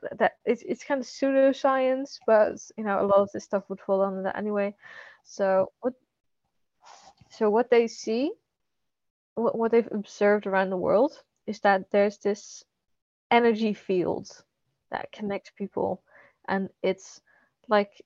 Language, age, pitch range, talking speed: English, 20-39, 190-225 Hz, 145 wpm